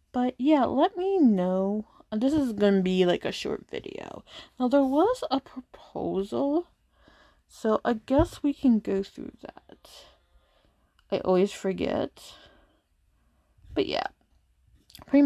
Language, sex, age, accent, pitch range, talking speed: English, female, 20-39, American, 200-250 Hz, 125 wpm